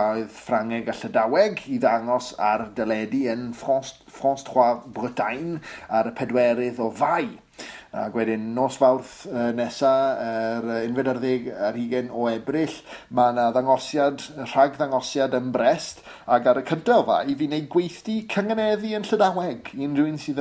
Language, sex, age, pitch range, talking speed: English, male, 30-49, 115-140 Hz, 145 wpm